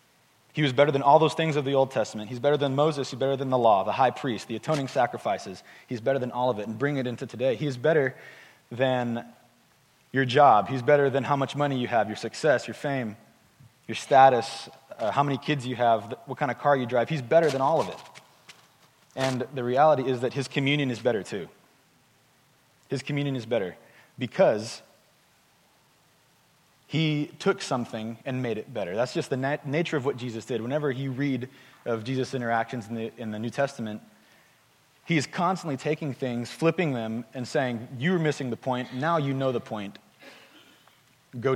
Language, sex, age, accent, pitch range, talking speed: English, male, 30-49, American, 125-145 Hz, 200 wpm